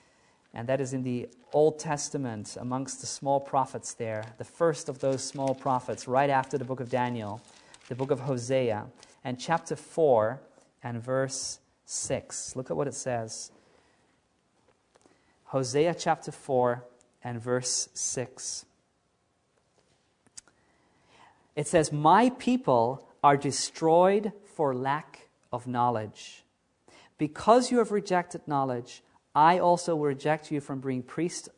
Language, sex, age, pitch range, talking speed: English, male, 40-59, 130-170 Hz, 130 wpm